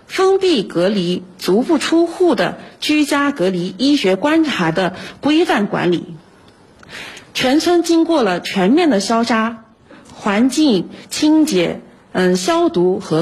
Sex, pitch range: female, 190-315 Hz